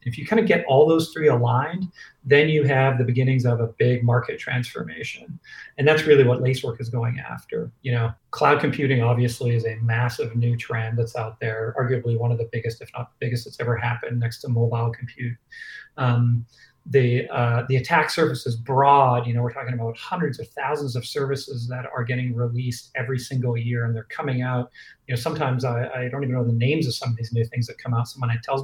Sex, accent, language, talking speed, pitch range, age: male, American, English, 220 wpm, 120-135 Hz, 40-59